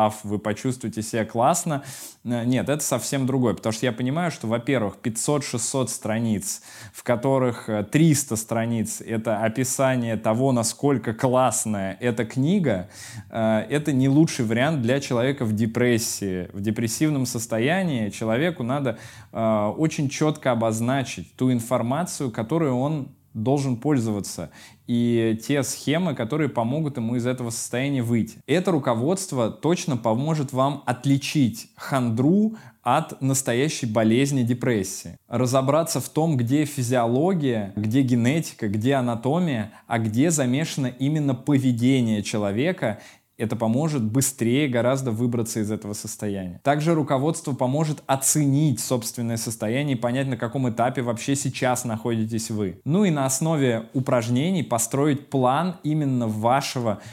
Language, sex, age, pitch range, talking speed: Russian, male, 20-39, 115-140 Hz, 125 wpm